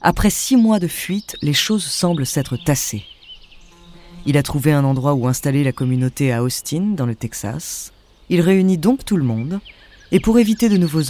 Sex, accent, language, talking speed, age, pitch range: female, French, French, 190 wpm, 20-39, 115-185 Hz